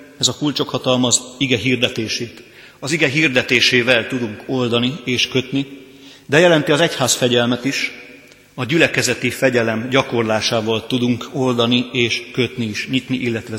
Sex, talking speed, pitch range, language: male, 130 wpm, 115-145 Hz, Hungarian